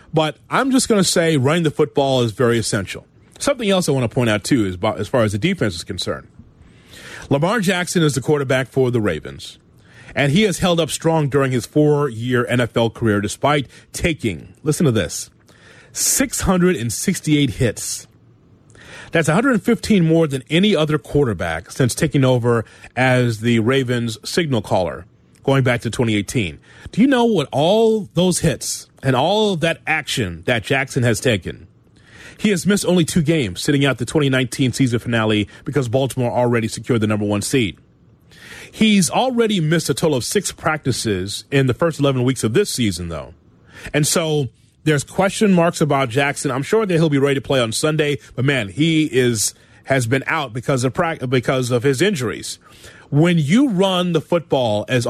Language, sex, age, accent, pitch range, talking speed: English, male, 30-49, American, 120-165 Hz, 175 wpm